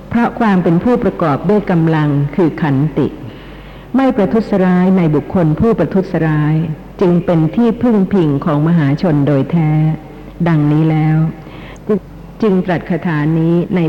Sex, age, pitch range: female, 60-79, 150-190 Hz